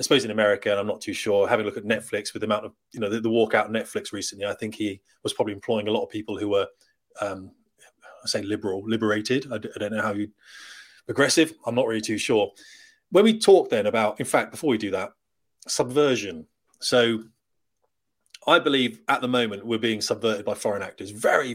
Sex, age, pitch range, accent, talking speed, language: male, 30-49, 120-170 Hz, British, 225 wpm, English